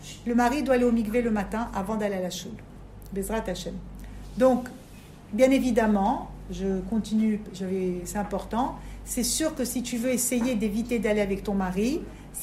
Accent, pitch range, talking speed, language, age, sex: French, 220-290 Hz, 175 wpm, French, 50-69, female